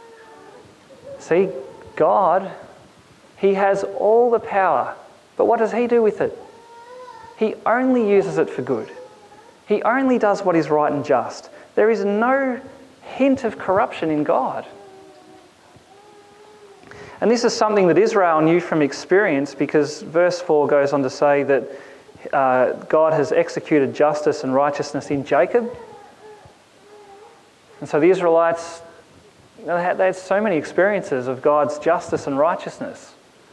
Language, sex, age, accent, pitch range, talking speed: English, male, 30-49, Australian, 150-255 Hz, 135 wpm